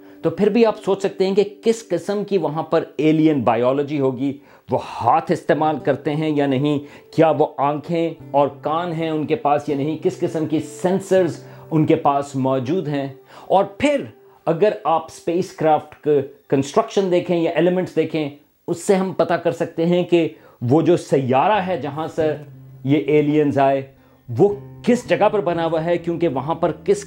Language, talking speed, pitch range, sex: Urdu, 180 wpm, 145-185 Hz, male